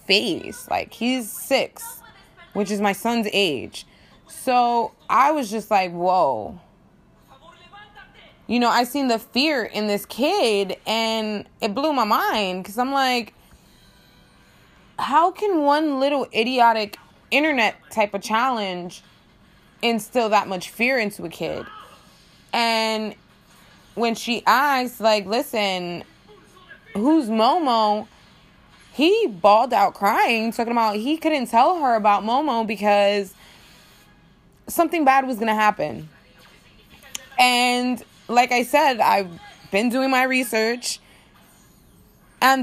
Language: English